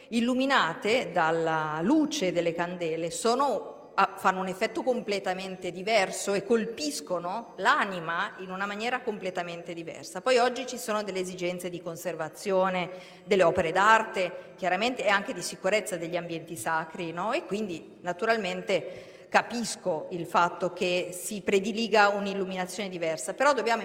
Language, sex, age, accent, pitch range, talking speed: Italian, female, 50-69, native, 175-215 Hz, 130 wpm